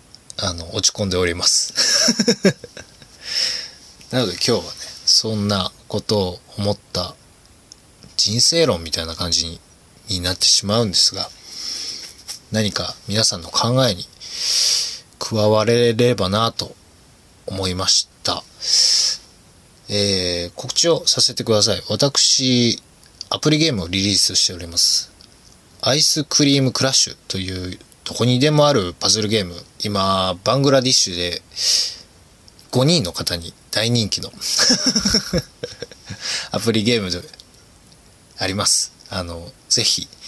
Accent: native